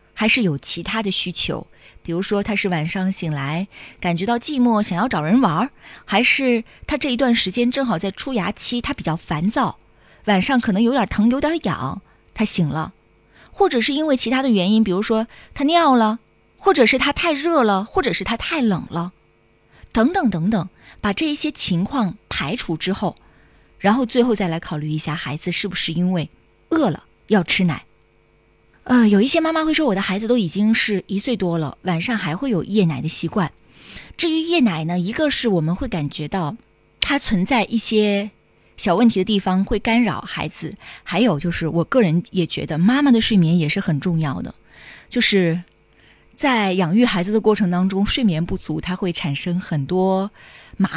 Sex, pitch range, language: female, 175-240 Hz, Chinese